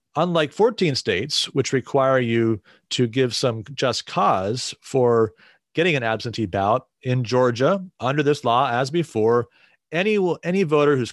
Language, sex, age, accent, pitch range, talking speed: English, male, 40-59, American, 115-145 Hz, 145 wpm